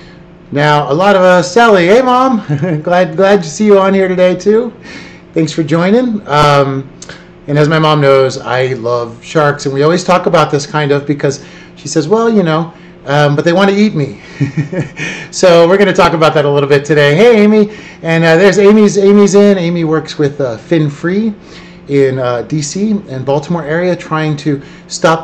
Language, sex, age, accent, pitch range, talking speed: English, male, 30-49, American, 145-180 Hz, 200 wpm